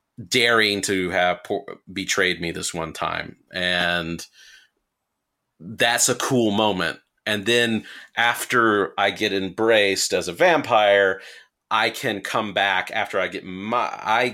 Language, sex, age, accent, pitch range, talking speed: English, male, 40-59, American, 90-115 Hz, 120 wpm